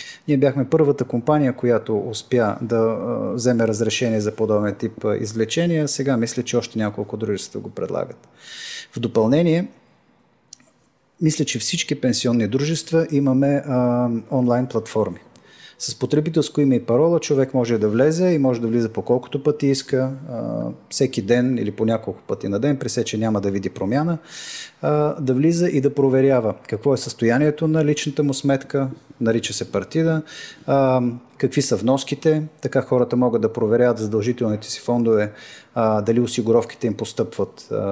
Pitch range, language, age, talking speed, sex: 110-140 Hz, Bulgarian, 30-49, 145 wpm, male